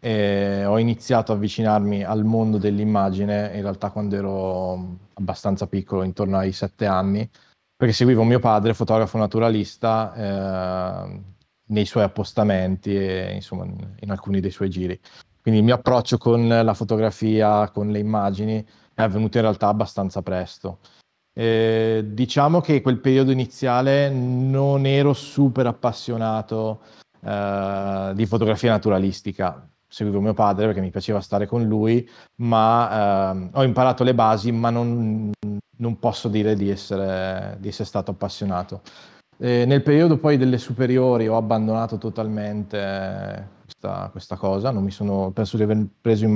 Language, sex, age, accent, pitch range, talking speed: Italian, male, 20-39, native, 100-115 Hz, 145 wpm